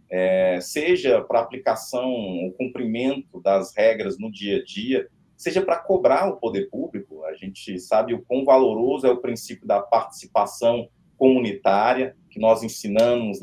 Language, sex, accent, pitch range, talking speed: Portuguese, male, Brazilian, 100-145 Hz, 150 wpm